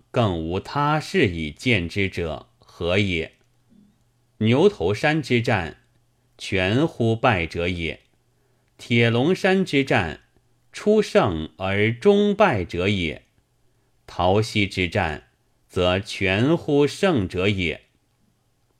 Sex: male